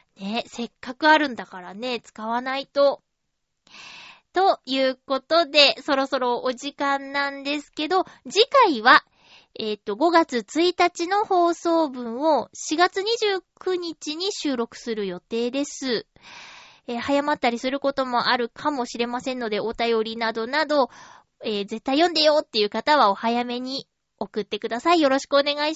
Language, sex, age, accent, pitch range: Japanese, female, 20-39, native, 240-345 Hz